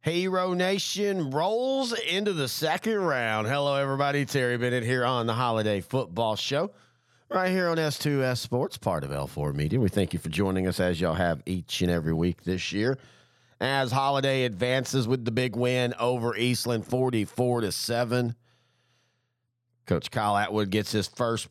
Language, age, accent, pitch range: English, 40-59, American, 110-125 Hz